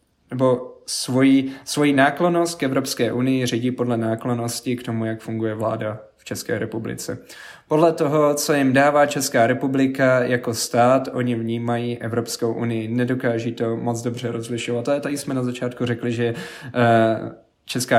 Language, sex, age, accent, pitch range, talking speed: Czech, male, 20-39, native, 115-135 Hz, 155 wpm